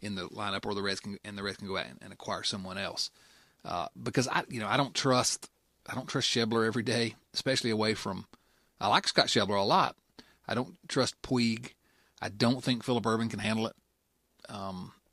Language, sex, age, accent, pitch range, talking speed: English, male, 40-59, American, 105-135 Hz, 215 wpm